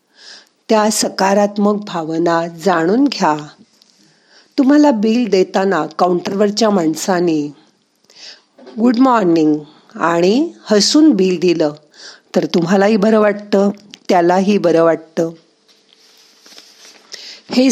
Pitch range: 165-220 Hz